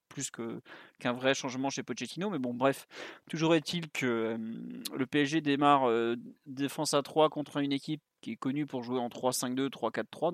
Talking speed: 185 wpm